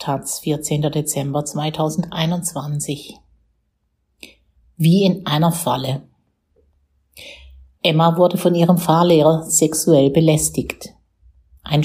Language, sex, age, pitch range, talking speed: German, female, 50-69, 145-175 Hz, 75 wpm